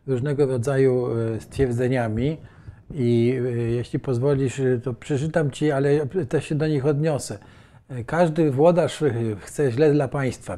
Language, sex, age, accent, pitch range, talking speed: Polish, male, 50-69, native, 115-135 Hz, 120 wpm